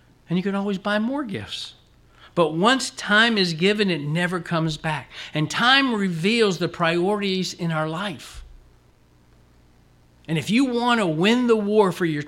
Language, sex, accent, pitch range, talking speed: English, male, American, 120-160 Hz, 165 wpm